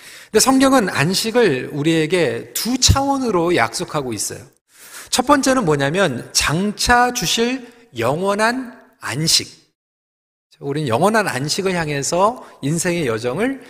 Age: 40-59